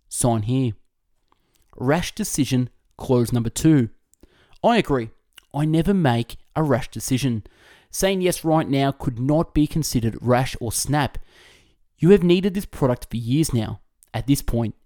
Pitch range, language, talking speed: 115-160 Hz, English, 150 wpm